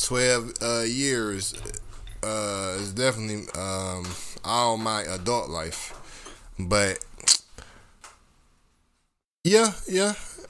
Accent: American